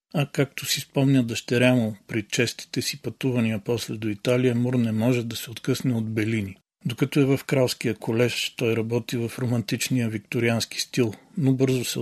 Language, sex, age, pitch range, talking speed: Bulgarian, male, 40-59, 110-125 Hz, 175 wpm